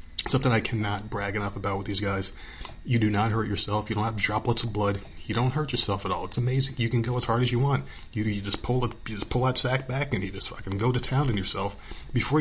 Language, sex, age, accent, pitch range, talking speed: English, male, 30-49, American, 100-125 Hz, 275 wpm